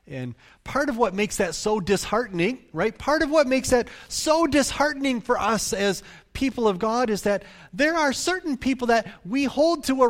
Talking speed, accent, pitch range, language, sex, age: 195 wpm, American, 175-245 Hz, English, male, 40-59